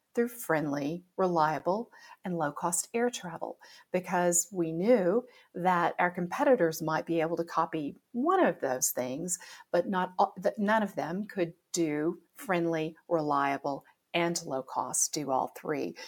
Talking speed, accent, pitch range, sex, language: 140 wpm, American, 160-200 Hz, female, English